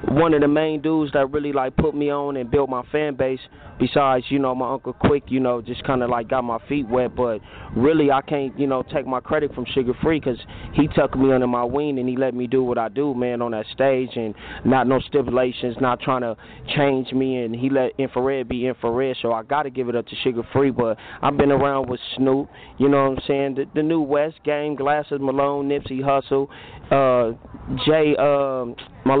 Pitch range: 125-140 Hz